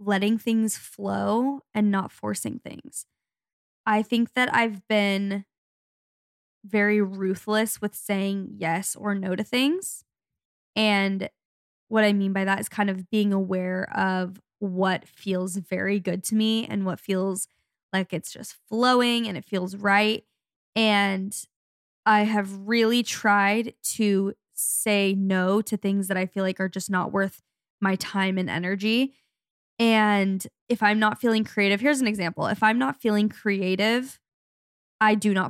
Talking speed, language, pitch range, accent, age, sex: 150 wpm, English, 195-220 Hz, American, 10-29, female